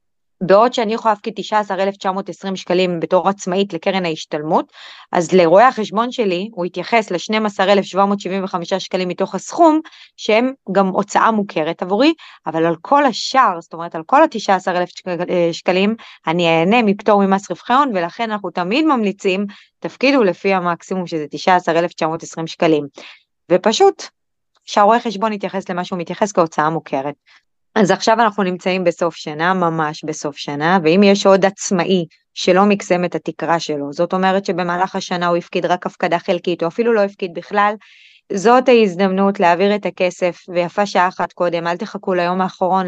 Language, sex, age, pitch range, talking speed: Hebrew, female, 20-39, 175-205 Hz, 145 wpm